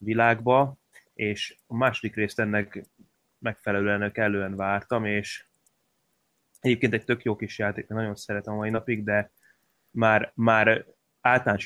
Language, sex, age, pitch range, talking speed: Hungarian, male, 20-39, 100-115 Hz, 125 wpm